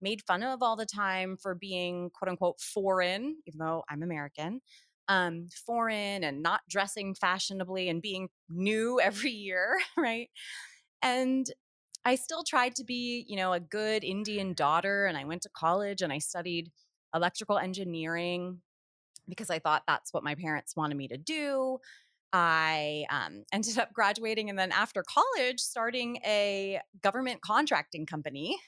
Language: English